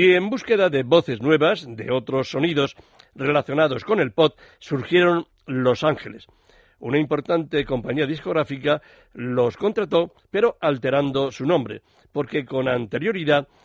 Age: 60-79